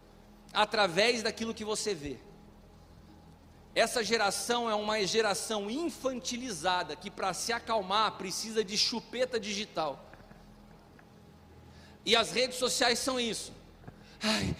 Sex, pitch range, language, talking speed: male, 190-240 Hz, English, 105 wpm